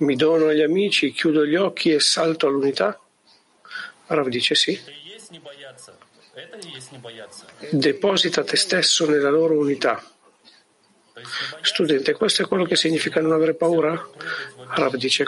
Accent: native